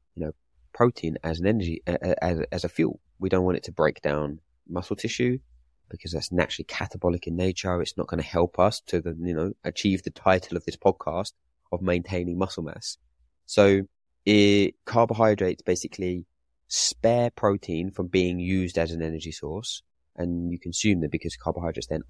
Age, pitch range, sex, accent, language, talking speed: 20-39, 80-95 Hz, male, British, English, 175 wpm